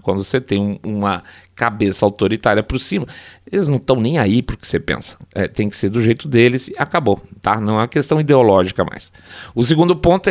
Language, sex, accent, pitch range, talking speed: Portuguese, male, Brazilian, 105-155 Hz, 205 wpm